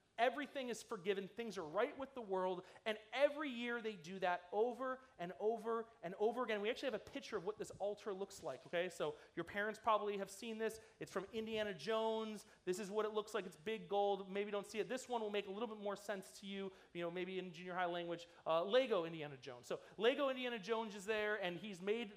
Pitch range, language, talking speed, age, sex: 190-255 Hz, English, 240 wpm, 30-49, male